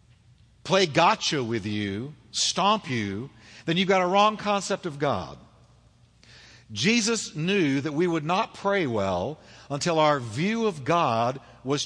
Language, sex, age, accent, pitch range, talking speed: English, male, 60-79, American, 120-200 Hz, 140 wpm